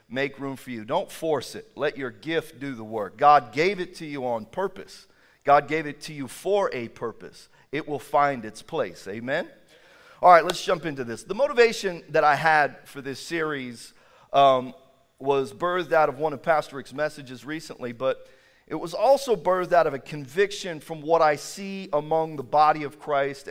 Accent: American